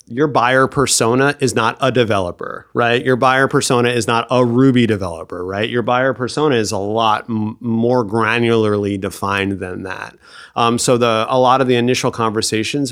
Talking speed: 175 wpm